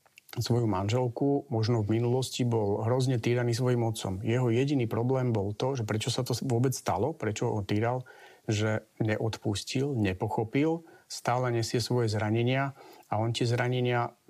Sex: male